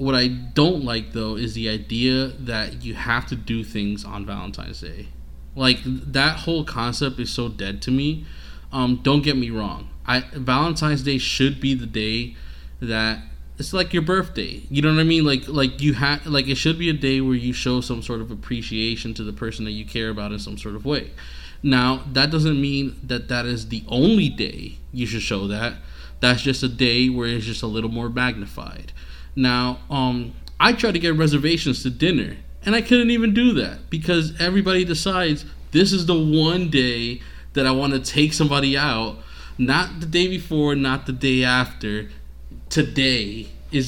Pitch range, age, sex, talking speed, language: 110-150 Hz, 20-39, male, 195 wpm, English